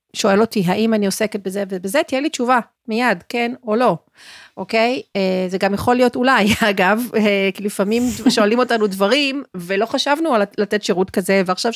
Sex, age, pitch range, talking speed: female, 40-59, 195-245 Hz, 165 wpm